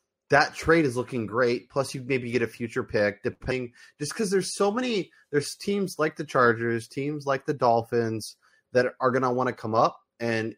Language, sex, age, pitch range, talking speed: English, male, 20-39, 110-125 Hz, 205 wpm